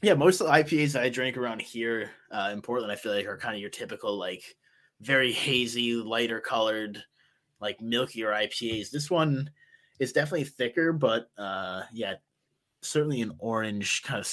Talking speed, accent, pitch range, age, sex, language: 170 wpm, American, 115-150 Hz, 20-39, male, English